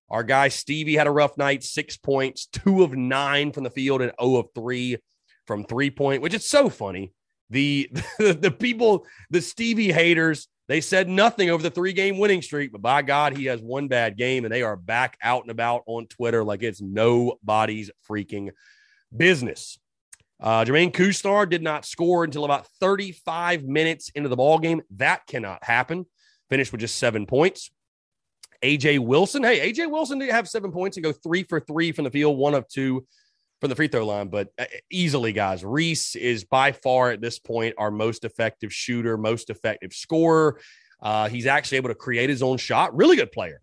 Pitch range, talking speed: 115-170 Hz, 190 wpm